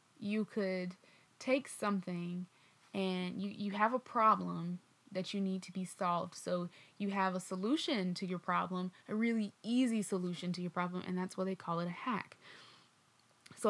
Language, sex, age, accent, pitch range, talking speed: English, female, 20-39, American, 180-200 Hz, 175 wpm